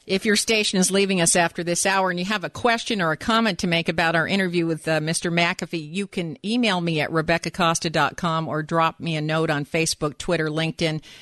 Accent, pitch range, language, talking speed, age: American, 160-200 Hz, English, 220 wpm, 50-69